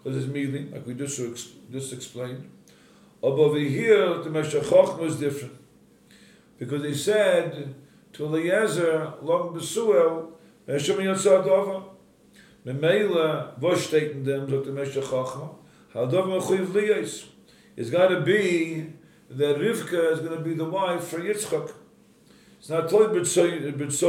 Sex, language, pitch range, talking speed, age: male, English, 140-185 Hz, 80 wpm, 50-69